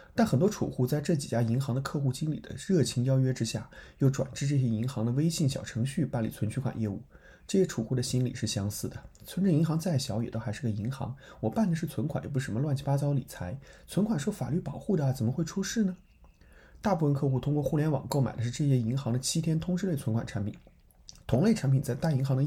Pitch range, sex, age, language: 120-155 Hz, male, 30-49, Chinese